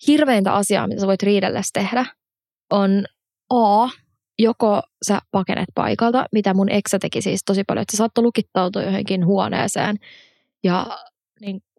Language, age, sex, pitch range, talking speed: Finnish, 20-39, female, 185-220 Hz, 145 wpm